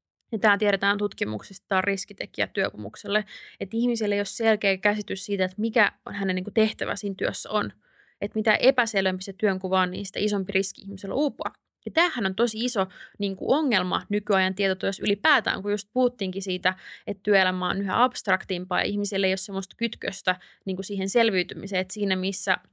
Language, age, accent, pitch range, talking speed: Finnish, 20-39, native, 185-205 Hz, 165 wpm